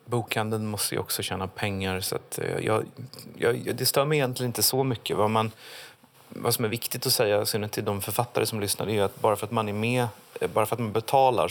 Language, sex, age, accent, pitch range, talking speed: Swedish, male, 30-49, native, 95-110 Hz, 230 wpm